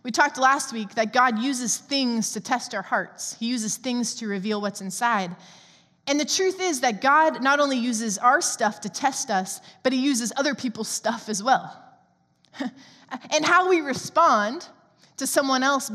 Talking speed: 180 wpm